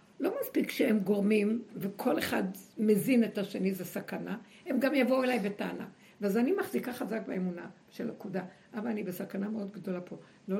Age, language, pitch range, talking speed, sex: 60-79, Hebrew, 195-250 Hz, 170 wpm, female